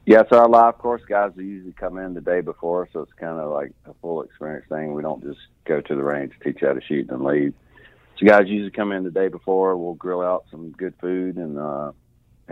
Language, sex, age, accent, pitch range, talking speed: English, male, 40-59, American, 75-90 Hz, 245 wpm